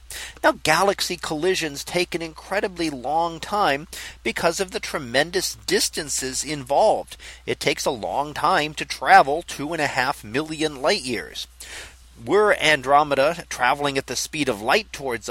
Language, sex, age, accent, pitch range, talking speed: English, male, 40-59, American, 140-190 Hz, 145 wpm